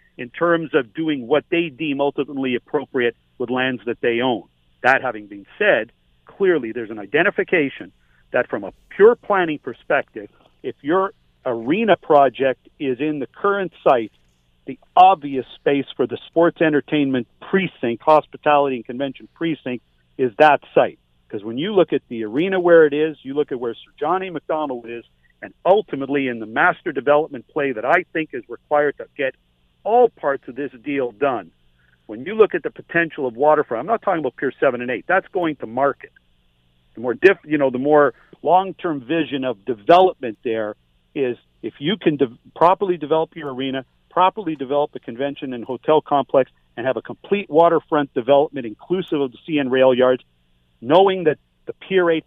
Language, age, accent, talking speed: English, 50-69, American, 175 wpm